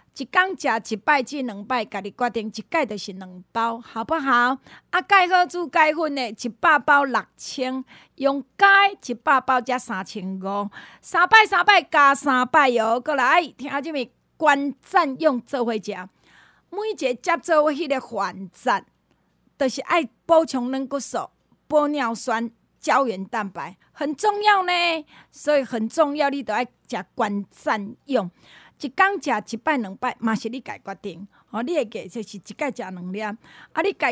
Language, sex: Chinese, female